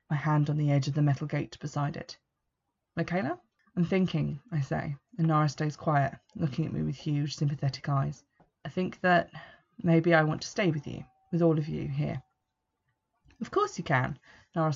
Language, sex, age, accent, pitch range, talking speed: English, female, 20-39, British, 150-175 Hz, 190 wpm